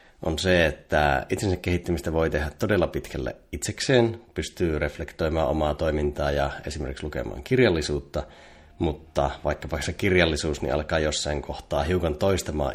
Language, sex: Finnish, male